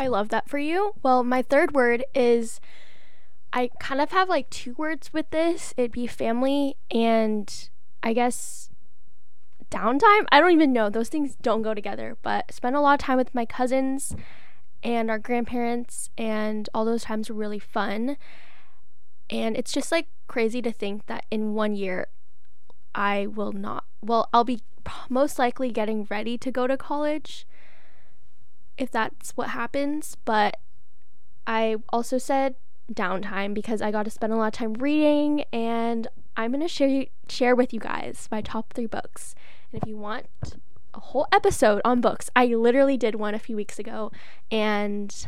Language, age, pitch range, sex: English, 10-29, 215-265 Hz, female